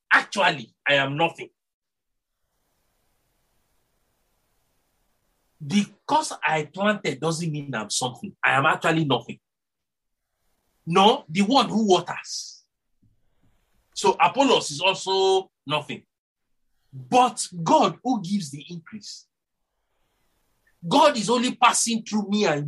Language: English